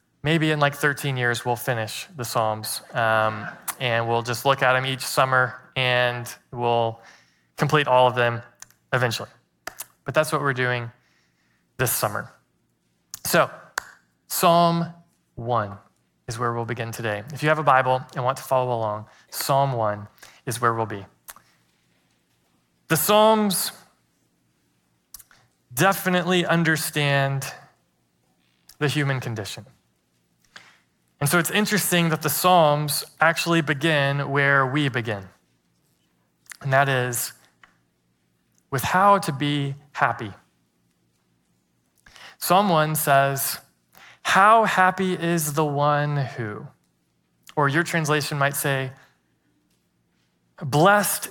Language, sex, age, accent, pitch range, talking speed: English, male, 20-39, American, 105-155 Hz, 115 wpm